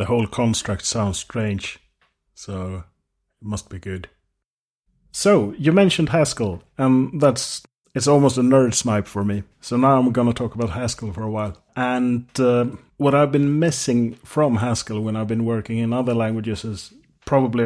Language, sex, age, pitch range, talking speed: English, male, 30-49, 110-130 Hz, 175 wpm